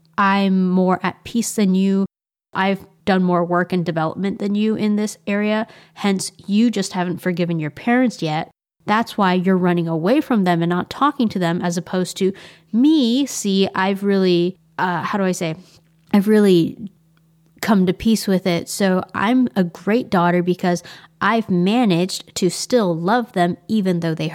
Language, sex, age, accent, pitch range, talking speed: English, female, 20-39, American, 170-205 Hz, 175 wpm